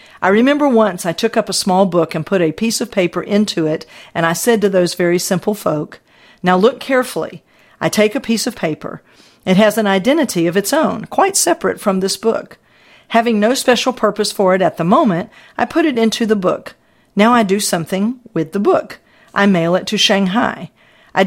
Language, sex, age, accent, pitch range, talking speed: English, female, 50-69, American, 180-240 Hz, 210 wpm